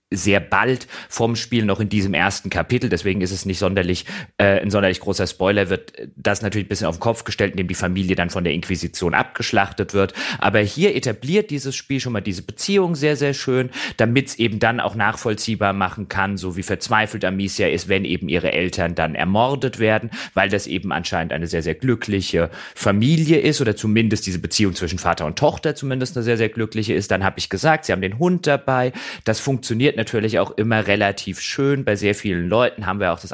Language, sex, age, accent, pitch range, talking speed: German, male, 30-49, German, 95-115 Hz, 210 wpm